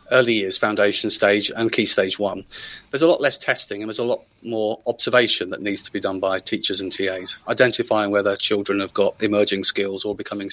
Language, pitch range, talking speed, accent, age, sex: English, 100-130 Hz, 210 wpm, British, 40-59, male